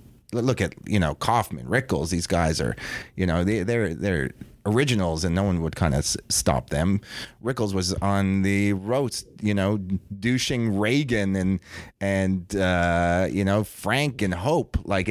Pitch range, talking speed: 90-115 Hz, 165 wpm